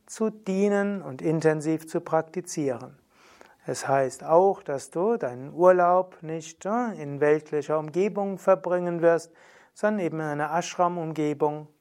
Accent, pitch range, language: German, 150-185 Hz, German